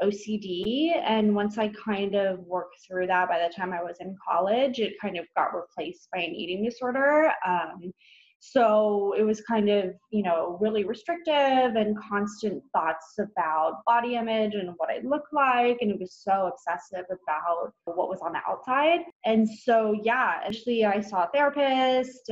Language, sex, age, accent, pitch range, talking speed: English, female, 20-39, American, 185-230 Hz, 175 wpm